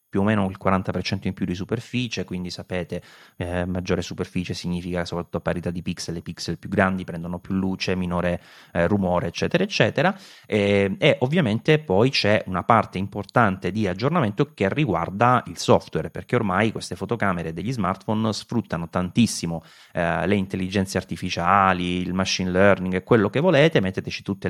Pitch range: 85-105 Hz